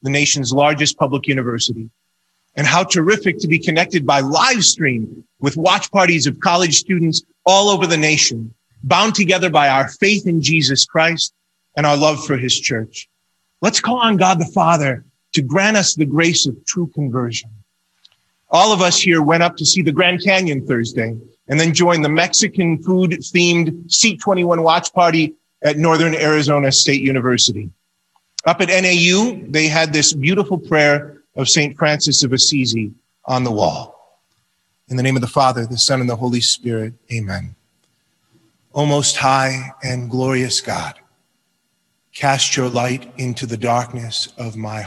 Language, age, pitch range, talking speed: English, 30-49, 125-170 Hz, 165 wpm